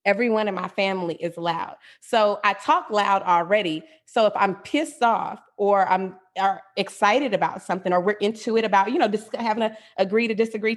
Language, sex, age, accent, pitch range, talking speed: English, female, 30-49, American, 195-245 Hz, 190 wpm